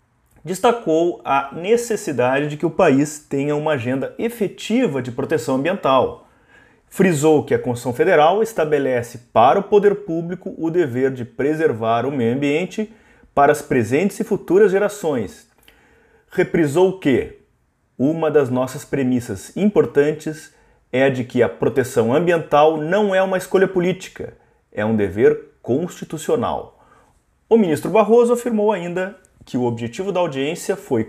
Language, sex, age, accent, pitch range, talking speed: Portuguese, male, 30-49, Brazilian, 125-185 Hz, 135 wpm